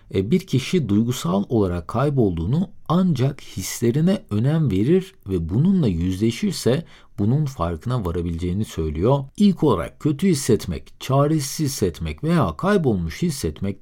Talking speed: 110 wpm